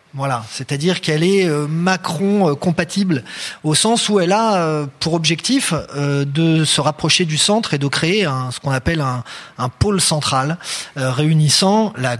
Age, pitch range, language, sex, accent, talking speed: 30-49, 140-170 Hz, French, male, French, 150 wpm